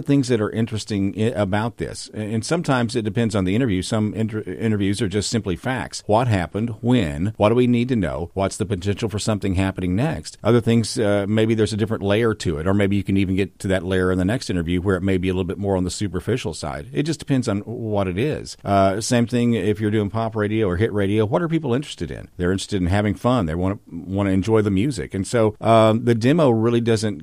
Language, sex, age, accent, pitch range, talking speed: English, male, 50-69, American, 95-115 Hz, 255 wpm